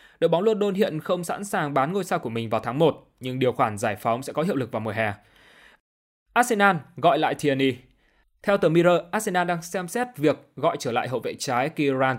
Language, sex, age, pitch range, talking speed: Vietnamese, male, 20-39, 130-175 Hz, 225 wpm